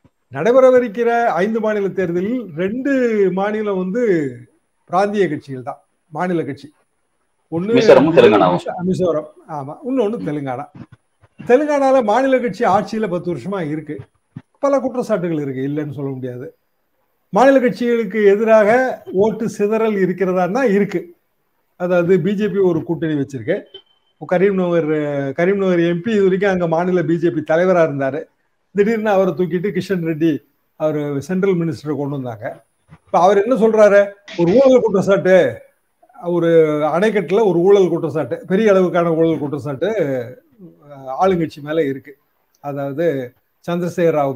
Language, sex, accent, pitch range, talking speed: Tamil, male, native, 155-210 Hz, 105 wpm